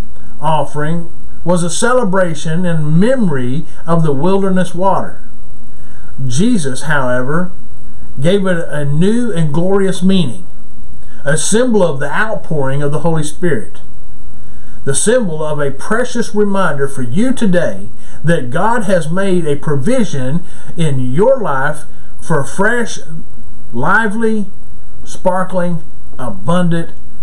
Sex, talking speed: male, 110 wpm